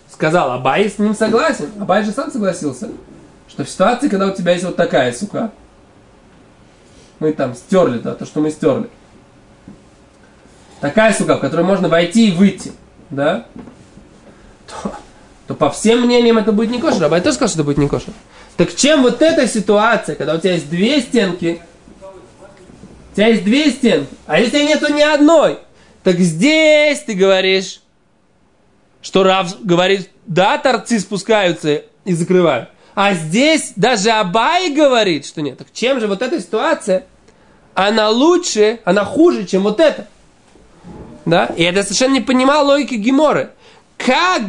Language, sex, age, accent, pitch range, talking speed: Russian, male, 20-39, native, 190-265 Hz, 160 wpm